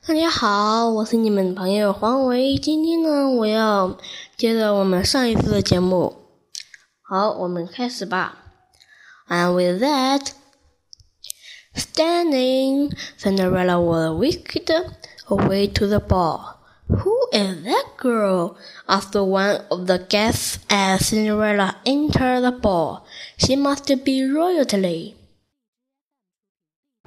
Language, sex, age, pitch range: Chinese, female, 10-29, 200-280 Hz